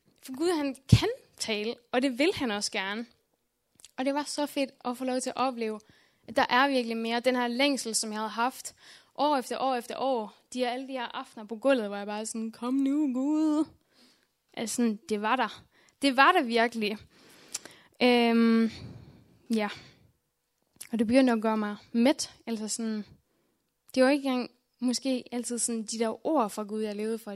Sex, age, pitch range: female, 10-29, 220-260 Hz